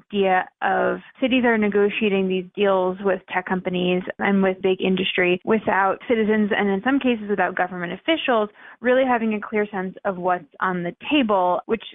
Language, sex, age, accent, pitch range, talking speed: English, female, 20-39, American, 185-225 Hz, 170 wpm